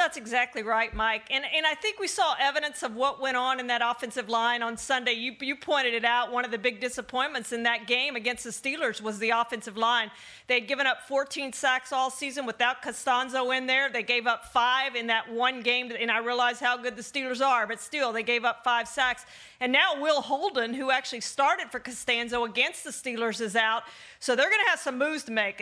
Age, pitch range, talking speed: 40-59, 230-270 Hz, 230 wpm